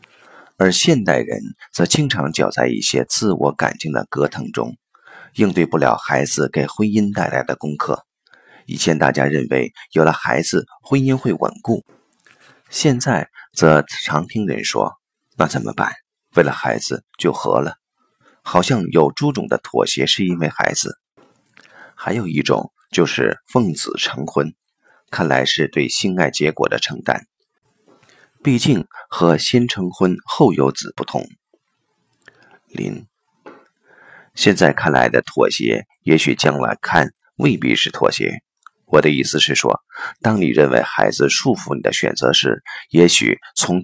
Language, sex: Chinese, male